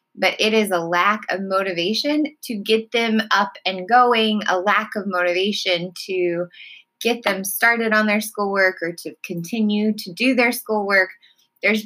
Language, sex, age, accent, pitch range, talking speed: English, female, 20-39, American, 165-215 Hz, 160 wpm